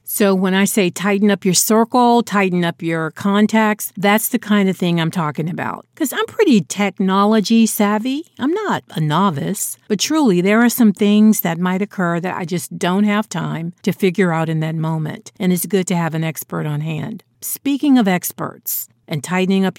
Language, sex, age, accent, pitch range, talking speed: English, female, 50-69, American, 165-205 Hz, 195 wpm